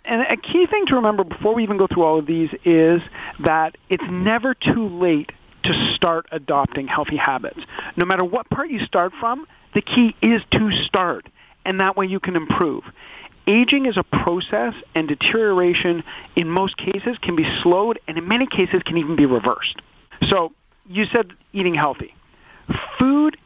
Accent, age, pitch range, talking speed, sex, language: American, 40-59, 160-210 Hz, 175 wpm, male, English